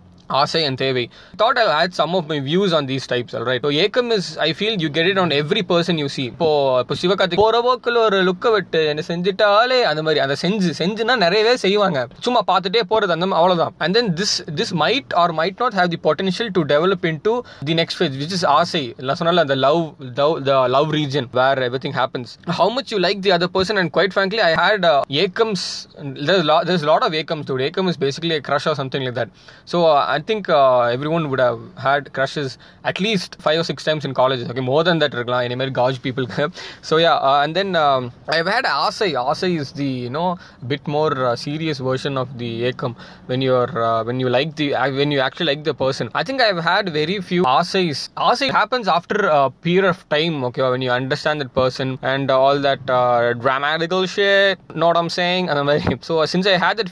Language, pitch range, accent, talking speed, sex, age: Tamil, 135-185 Hz, native, 230 wpm, male, 20-39